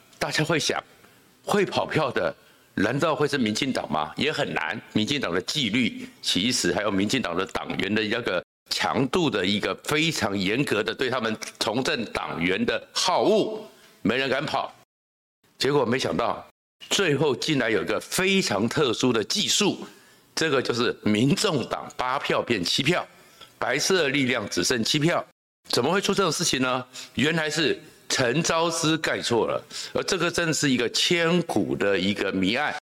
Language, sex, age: Chinese, male, 60-79